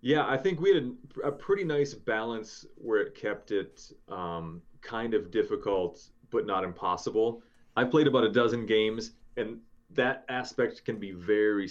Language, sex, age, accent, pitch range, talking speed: English, male, 30-49, American, 105-130 Hz, 165 wpm